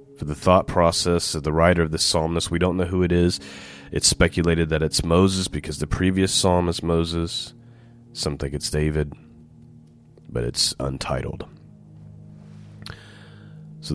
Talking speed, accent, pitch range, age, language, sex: 140 wpm, American, 80-105 Hz, 30-49, English, male